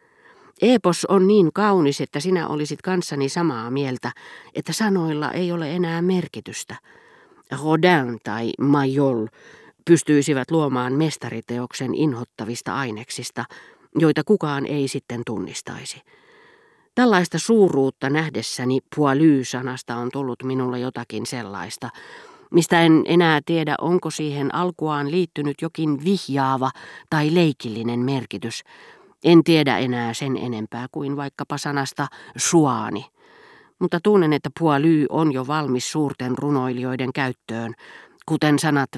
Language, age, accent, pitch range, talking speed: Finnish, 40-59, native, 130-165 Hz, 110 wpm